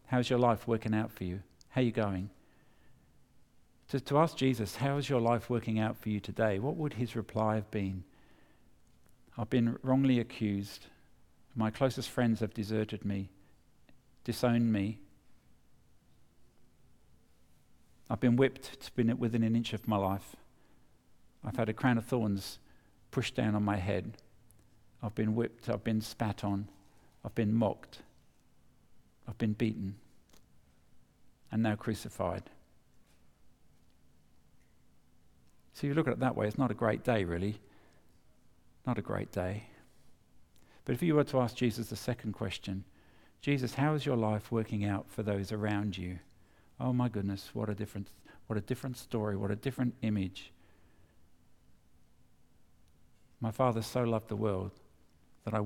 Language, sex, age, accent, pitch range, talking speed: English, male, 50-69, British, 100-120 Hz, 150 wpm